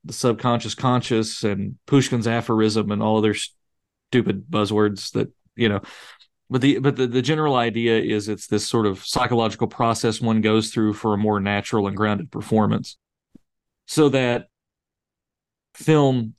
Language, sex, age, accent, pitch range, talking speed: English, male, 40-59, American, 110-120 Hz, 150 wpm